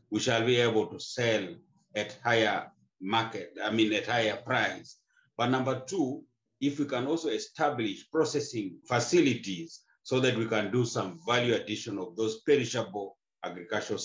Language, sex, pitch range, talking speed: English, male, 105-130 Hz, 155 wpm